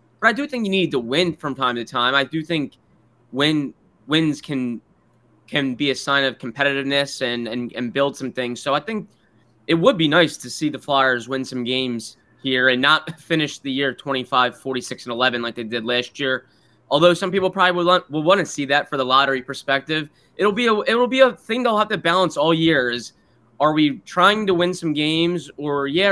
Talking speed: 220 wpm